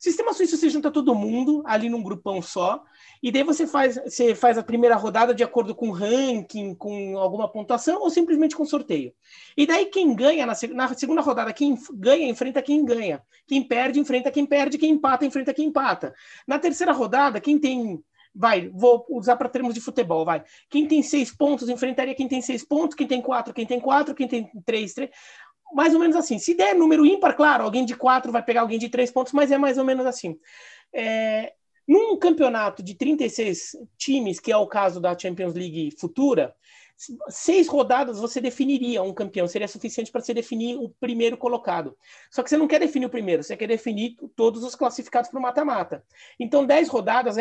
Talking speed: 205 wpm